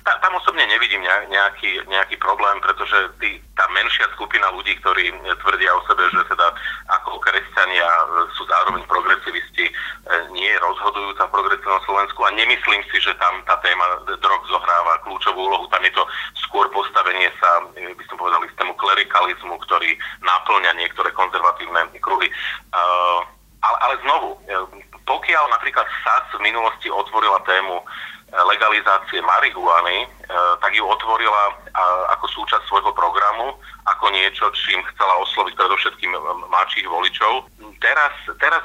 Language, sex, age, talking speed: Slovak, male, 30-49, 140 wpm